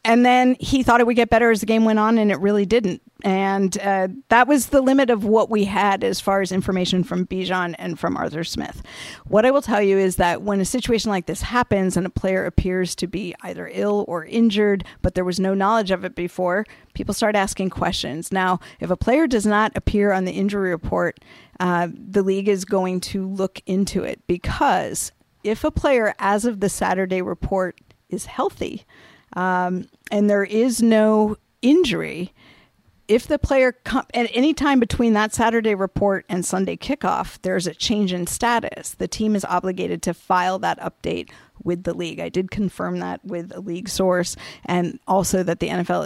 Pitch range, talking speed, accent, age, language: 180-225 Hz, 195 wpm, American, 50-69, English